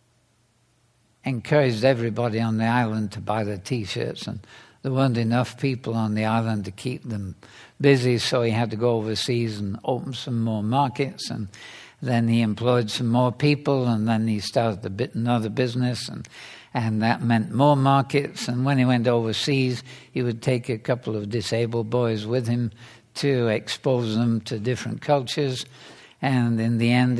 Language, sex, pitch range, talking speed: English, male, 115-135 Hz, 175 wpm